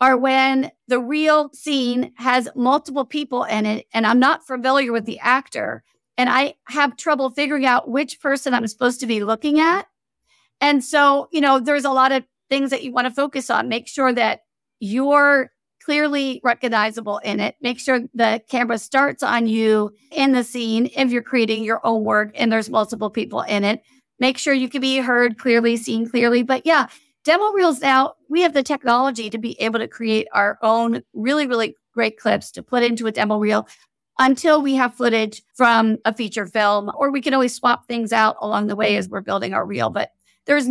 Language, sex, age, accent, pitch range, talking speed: English, female, 50-69, American, 225-270 Hz, 200 wpm